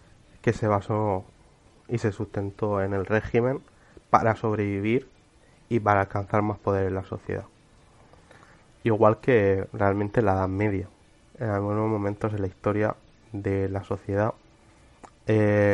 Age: 20-39